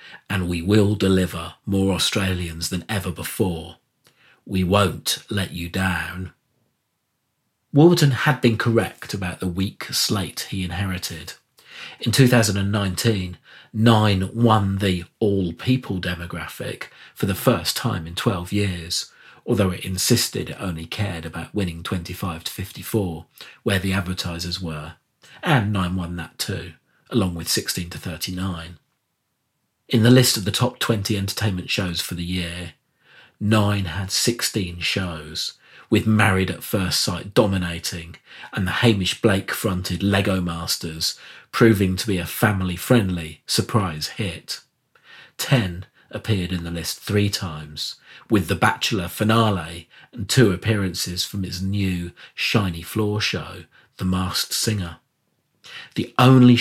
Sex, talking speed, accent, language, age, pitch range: male, 125 wpm, British, English, 40-59, 85-110 Hz